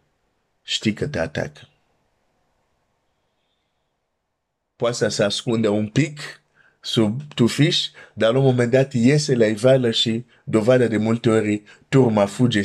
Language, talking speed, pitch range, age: Romanian, 130 wpm, 100-125 Hz, 50-69